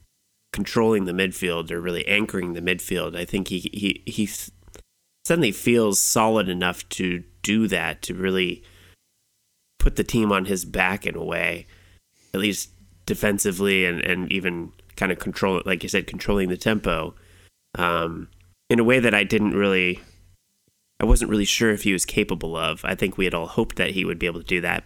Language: English